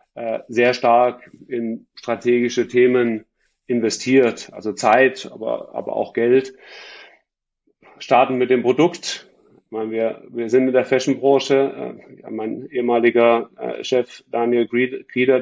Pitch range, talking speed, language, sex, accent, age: 120-135 Hz, 115 wpm, German, male, German, 30-49